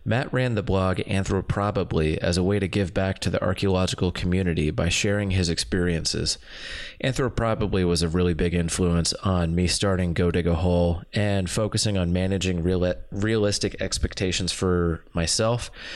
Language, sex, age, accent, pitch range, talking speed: English, male, 30-49, American, 85-100 Hz, 160 wpm